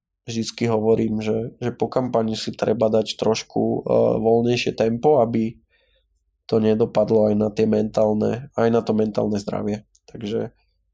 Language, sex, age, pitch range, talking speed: Slovak, male, 20-39, 110-120 Hz, 145 wpm